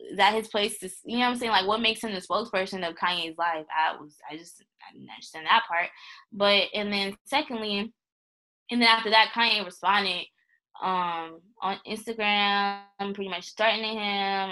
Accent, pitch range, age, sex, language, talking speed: American, 180-225 Hz, 10-29, female, English, 185 wpm